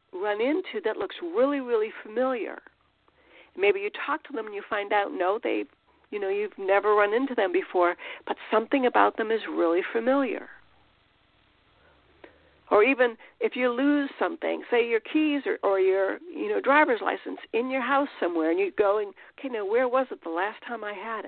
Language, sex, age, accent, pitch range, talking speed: English, female, 60-79, American, 210-345 Hz, 190 wpm